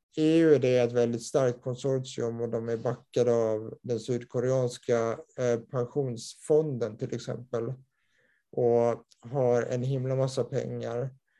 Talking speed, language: 125 wpm, Swedish